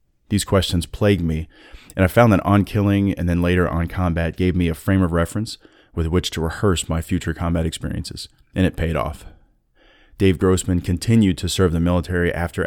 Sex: male